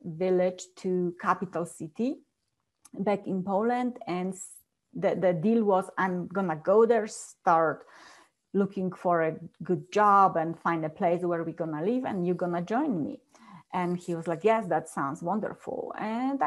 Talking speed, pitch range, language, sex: 160 wpm, 175-220 Hz, English, female